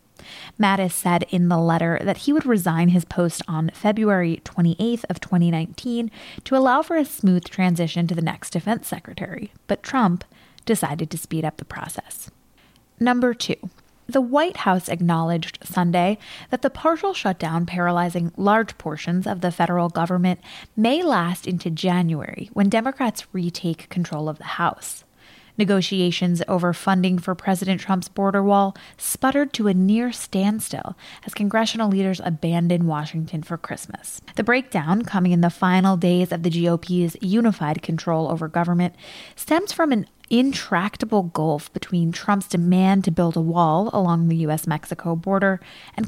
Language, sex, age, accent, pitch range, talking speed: English, female, 20-39, American, 170-210 Hz, 150 wpm